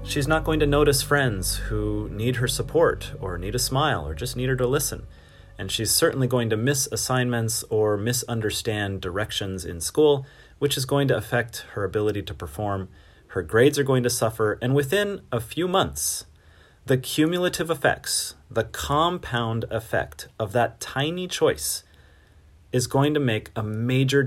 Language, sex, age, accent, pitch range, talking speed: English, male, 30-49, American, 95-130 Hz, 170 wpm